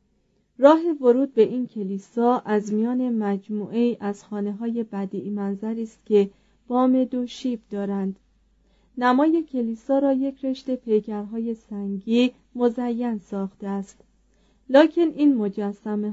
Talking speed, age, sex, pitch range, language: 120 wpm, 30-49, female, 210-255 Hz, Persian